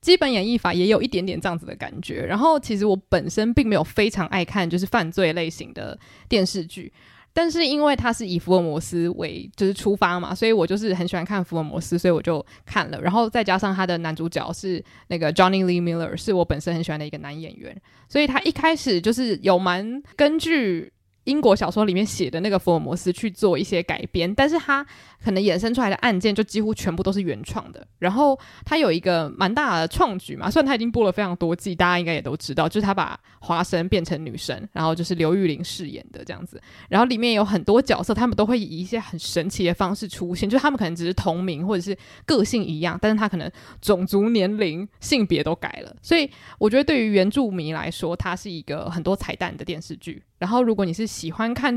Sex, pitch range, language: female, 175-225 Hz, Chinese